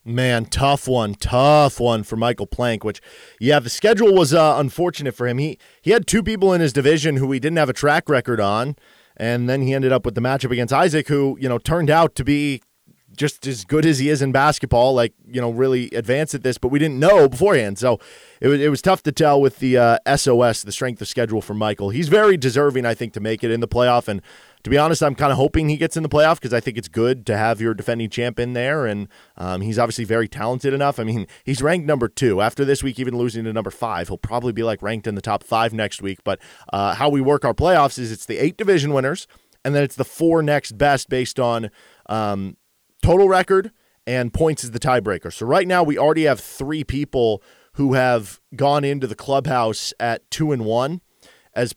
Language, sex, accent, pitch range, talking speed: English, male, American, 115-145 Hz, 240 wpm